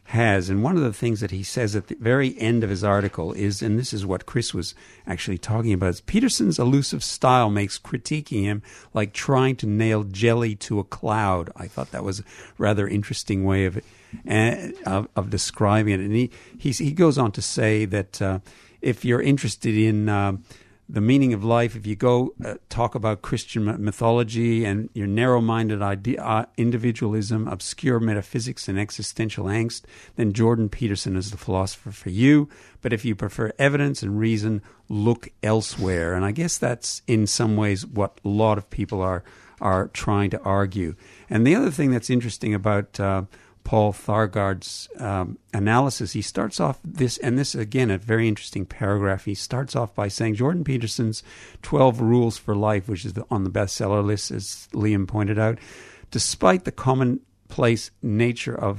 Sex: male